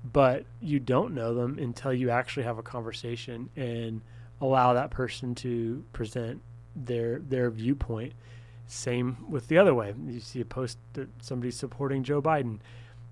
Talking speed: 155 wpm